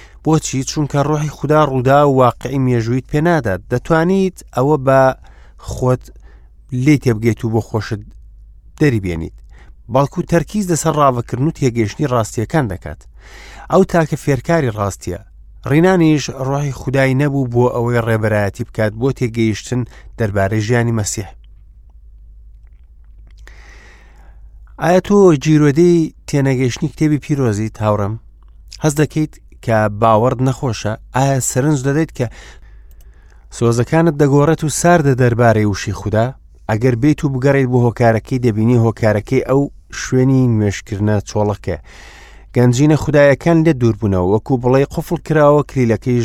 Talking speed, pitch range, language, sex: 125 wpm, 105-145 Hz, English, male